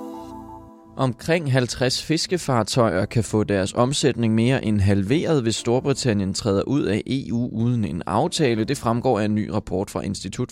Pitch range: 100-125 Hz